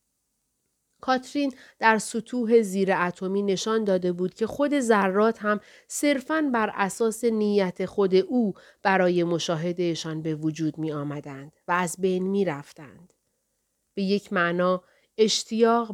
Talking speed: 120 wpm